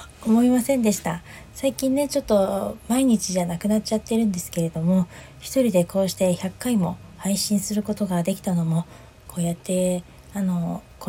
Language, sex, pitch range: Japanese, female, 175-205 Hz